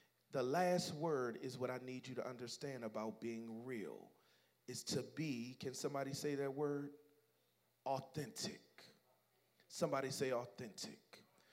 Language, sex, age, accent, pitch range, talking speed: English, male, 40-59, American, 150-210 Hz, 130 wpm